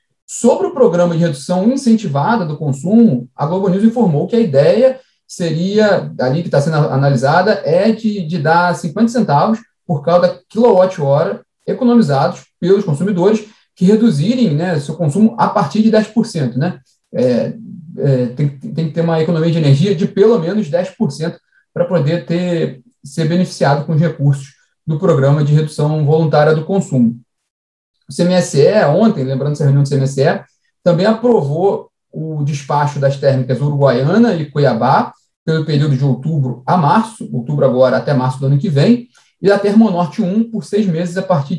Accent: Brazilian